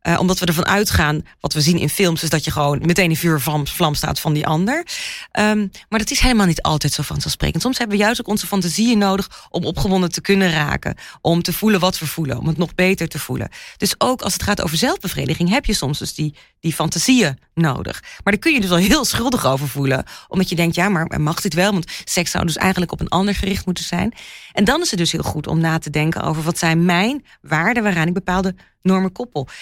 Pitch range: 160-200 Hz